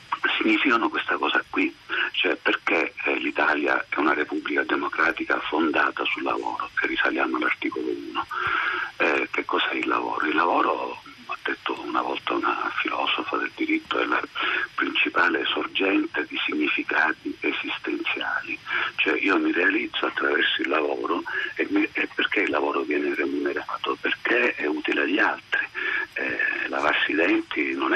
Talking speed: 145 wpm